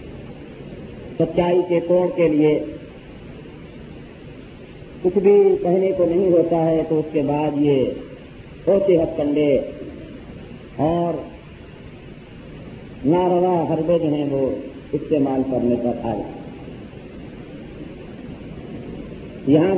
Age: 50-69